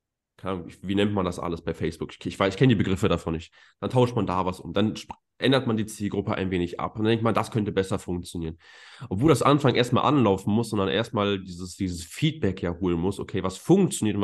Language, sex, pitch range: German, male, 95-120 Hz